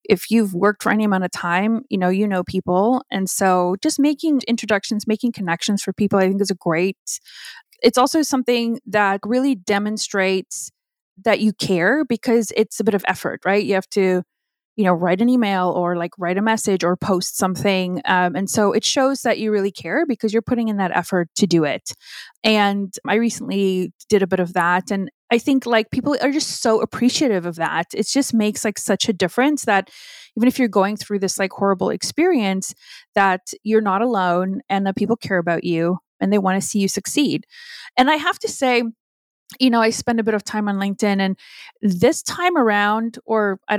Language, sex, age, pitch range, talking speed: English, female, 20-39, 190-235 Hz, 205 wpm